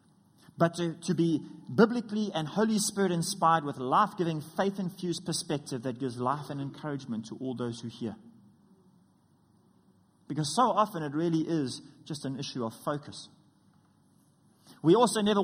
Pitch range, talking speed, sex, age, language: 135-175 Hz, 145 wpm, male, 30-49, English